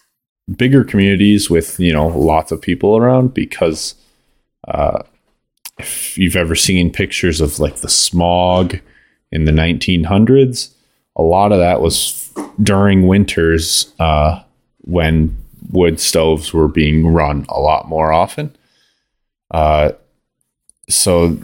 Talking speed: 120 wpm